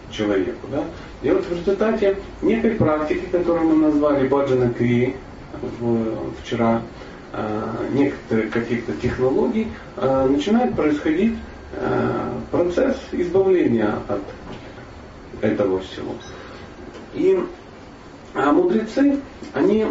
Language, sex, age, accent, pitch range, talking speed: Russian, male, 40-59, native, 125-205 Hz, 80 wpm